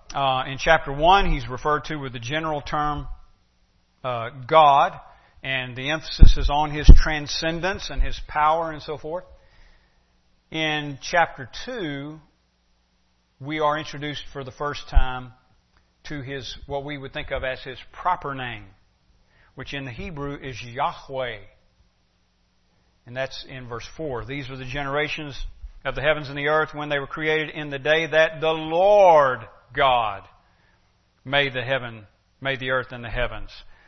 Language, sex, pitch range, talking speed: English, male, 120-150 Hz, 155 wpm